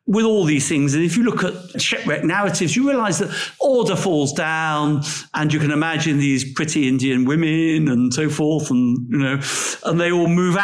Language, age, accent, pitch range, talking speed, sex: English, 50-69, British, 135-180 Hz, 195 wpm, male